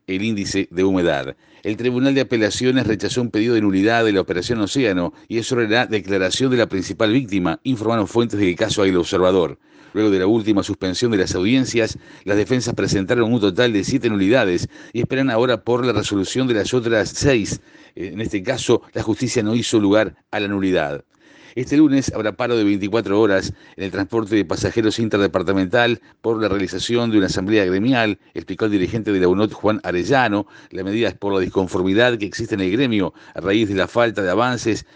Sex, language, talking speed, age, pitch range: male, Spanish, 195 wpm, 50-69, 95-120 Hz